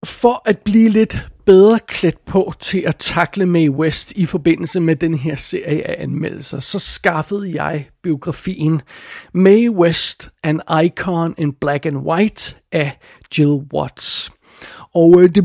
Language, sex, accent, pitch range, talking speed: Danish, male, native, 160-190 Hz, 145 wpm